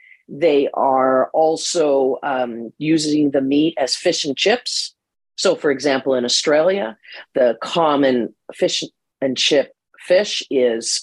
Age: 40-59